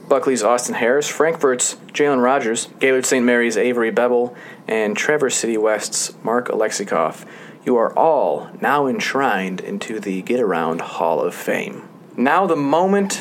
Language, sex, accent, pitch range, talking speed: English, male, American, 115-150 Hz, 145 wpm